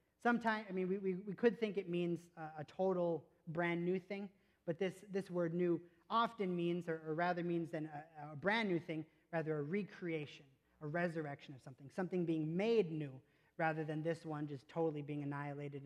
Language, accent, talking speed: English, American, 195 wpm